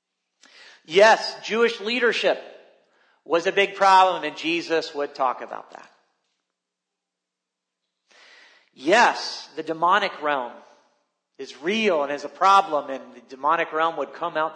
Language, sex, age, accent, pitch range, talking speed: English, male, 40-59, American, 145-225 Hz, 125 wpm